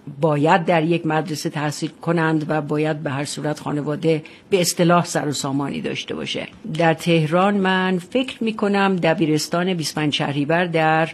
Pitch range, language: 155-180 Hz, Persian